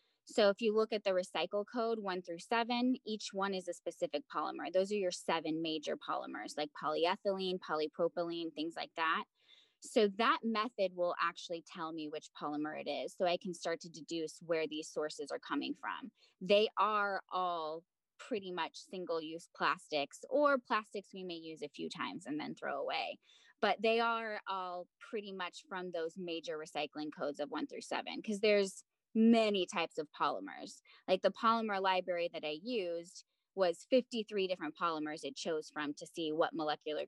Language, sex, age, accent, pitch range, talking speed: English, female, 10-29, American, 165-215 Hz, 180 wpm